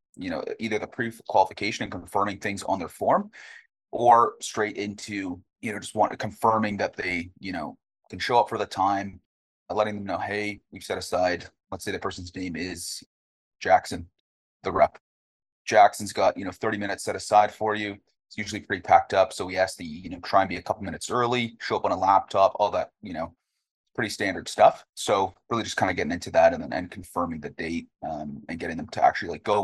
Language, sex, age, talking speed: English, male, 30-49, 220 wpm